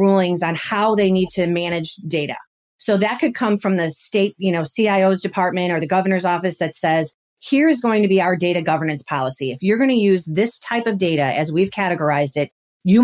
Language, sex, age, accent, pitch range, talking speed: English, female, 40-59, American, 160-205 Hz, 220 wpm